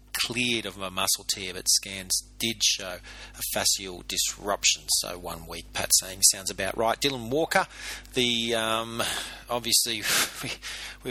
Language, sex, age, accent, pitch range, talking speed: English, male, 30-49, Australian, 100-115 Hz, 140 wpm